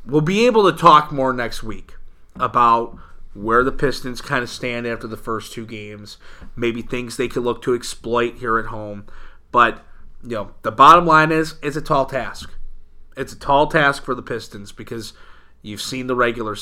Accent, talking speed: American, 190 wpm